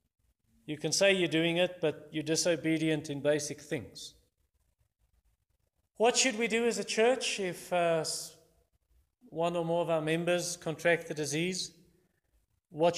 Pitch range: 120-160 Hz